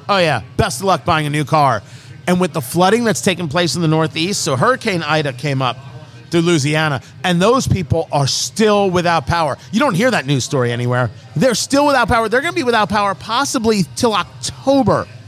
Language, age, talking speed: English, 40-59, 210 wpm